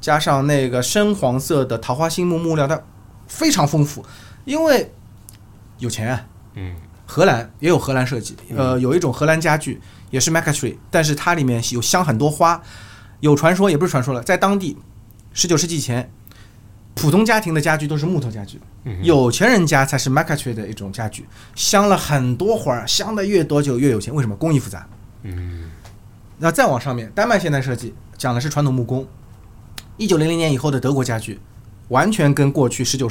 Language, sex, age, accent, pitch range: Chinese, male, 20-39, native, 110-155 Hz